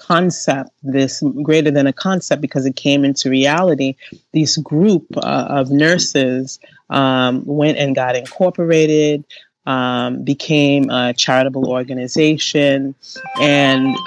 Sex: female